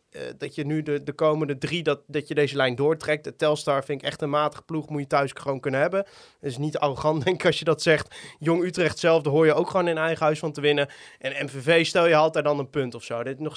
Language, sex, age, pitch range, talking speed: Dutch, male, 20-39, 140-170 Hz, 275 wpm